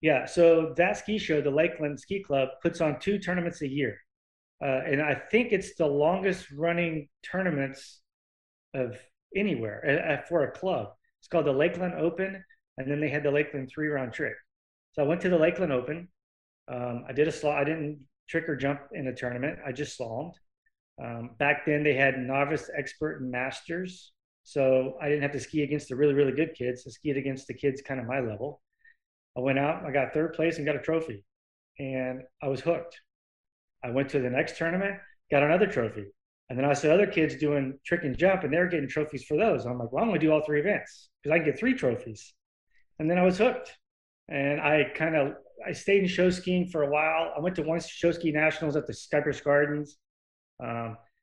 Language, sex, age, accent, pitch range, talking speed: English, male, 30-49, American, 135-165 Hz, 210 wpm